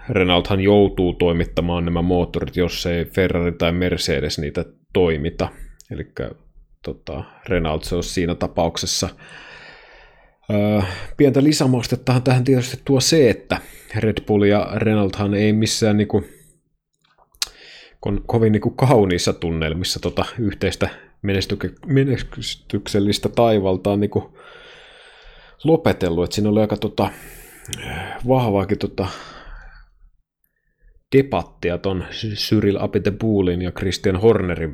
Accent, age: native, 20-39